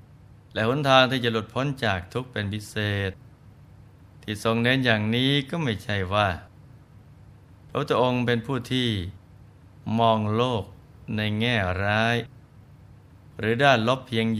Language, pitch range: Thai, 100-125 Hz